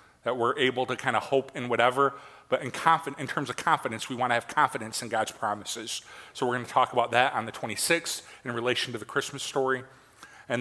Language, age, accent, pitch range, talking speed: English, 40-59, American, 120-145 Hz, 225 wpm